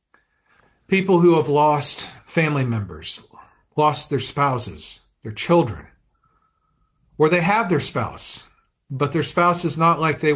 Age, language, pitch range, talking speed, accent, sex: 40-59, English, 120-165 Hz, 135 wpm, American, male